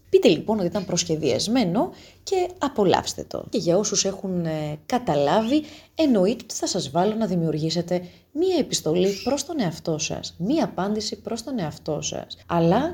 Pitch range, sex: 170-260 Hz, female